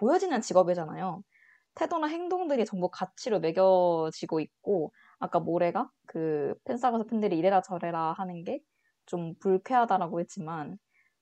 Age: 20-39